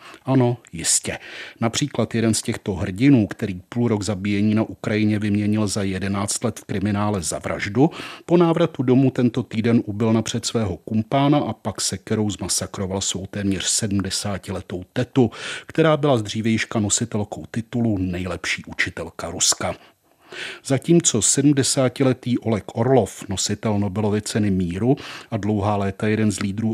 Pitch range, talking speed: 100-120 Hz, 135 wpm